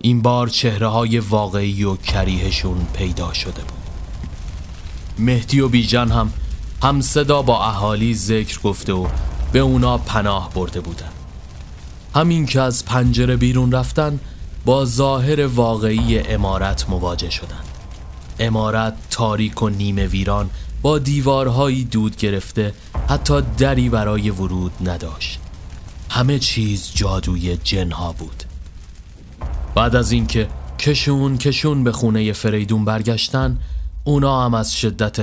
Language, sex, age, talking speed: Persian, male, 30-49, 115 wpm